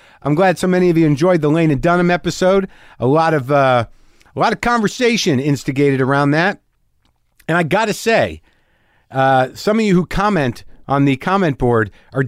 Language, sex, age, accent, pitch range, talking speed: English, male, 50-69, American, 130-205 Hz, 190 wpm